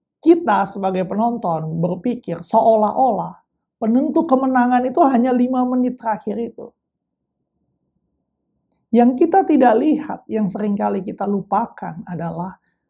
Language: Indonesian